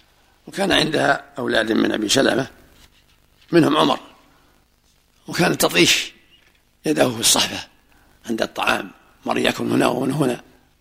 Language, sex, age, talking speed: Arabic, male, 60-79, 105 wpm